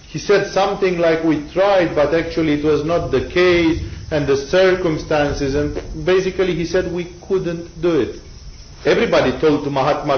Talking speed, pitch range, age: 165 wpm, 135-175 Hz, 40-59